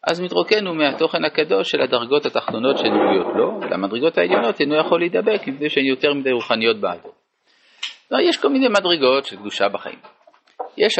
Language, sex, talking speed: Hebrew, male, 160 wpm